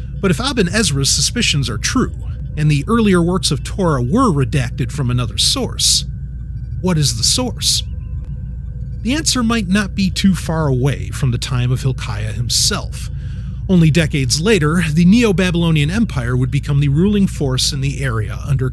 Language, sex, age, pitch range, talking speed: English, male, 30-49, 125-160 Hz, 165 wpm